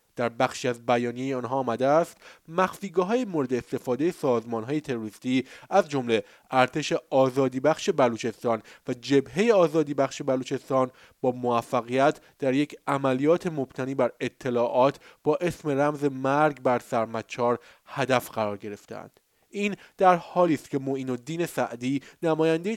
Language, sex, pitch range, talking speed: Persian, male, 120-150 Hz, 125 wpm